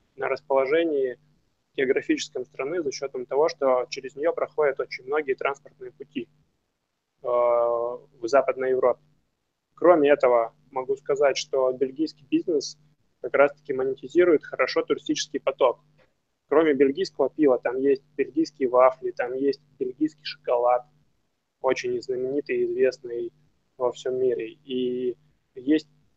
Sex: male